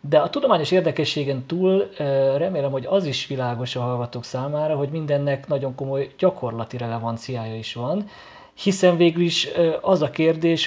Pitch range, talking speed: 125-150 Hz, 150 wpm